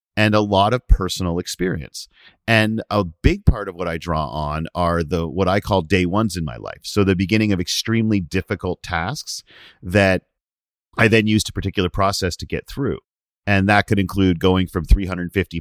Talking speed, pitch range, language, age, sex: 190 wpm, 85-105 Hz, English, 40-59, male